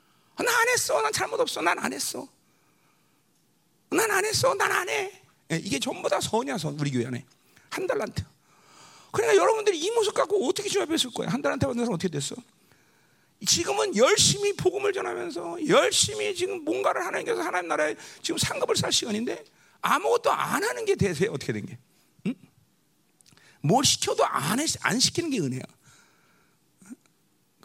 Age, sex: 40-59, male